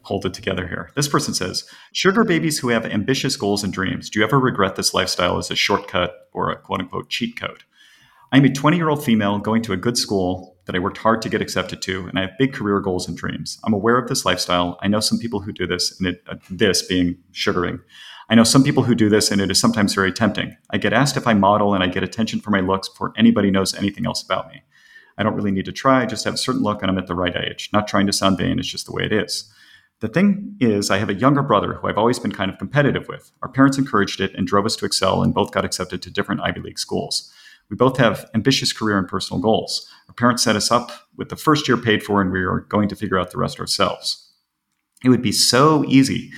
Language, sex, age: English, male, 40-59